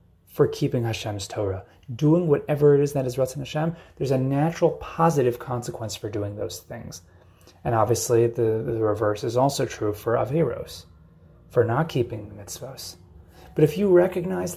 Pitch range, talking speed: 100-135 Hz, 160 wpm